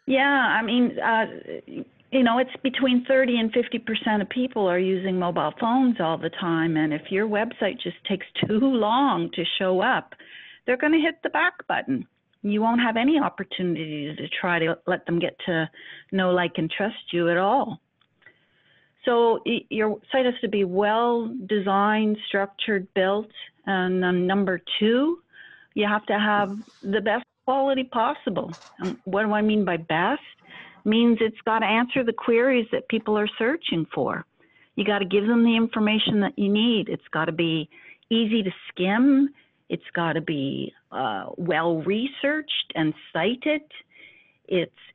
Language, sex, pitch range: English, female, 185-245 Hz